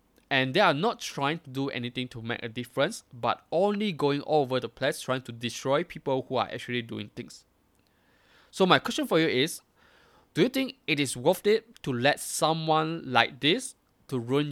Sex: male